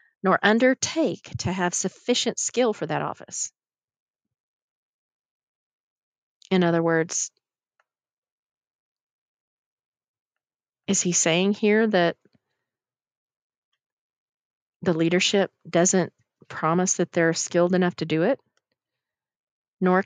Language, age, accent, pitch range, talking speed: English, 40-59, American, 165-210 Hz, 85 wpm